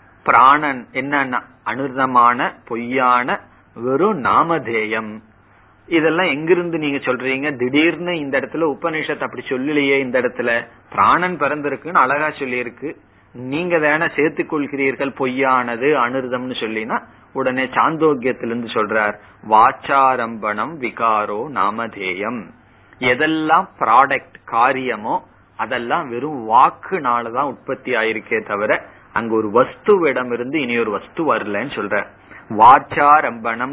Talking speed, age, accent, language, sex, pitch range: 95 wpm, 30-49, native, Tamil, male, 115-150 Hz